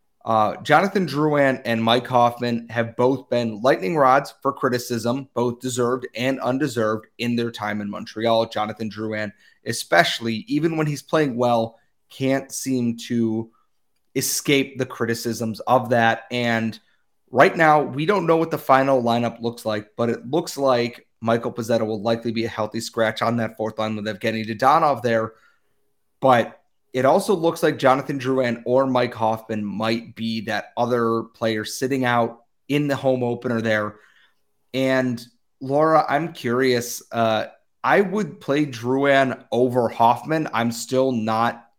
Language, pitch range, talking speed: English, 115-135 Hz, 150 wpm